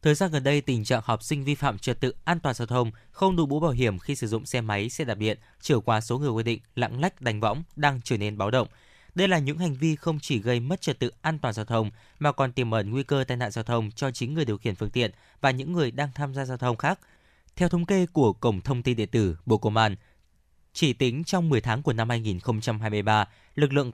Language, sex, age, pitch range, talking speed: Vietnamese, male, 20-39, 110-145 Hz, 270 wpm